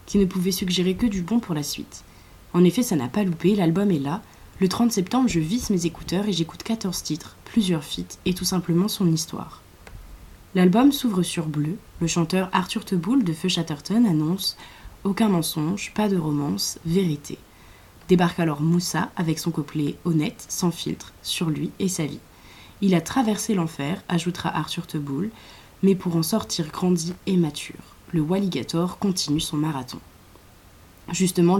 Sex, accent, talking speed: female, French, 180 wpm